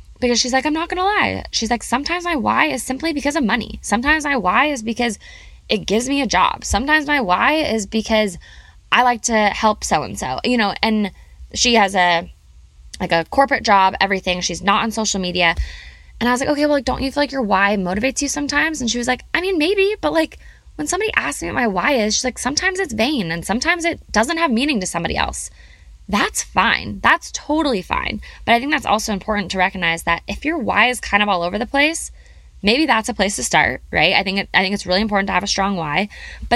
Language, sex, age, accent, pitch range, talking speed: English, female, 20-39, American, 185-265 Hz, 240 wpm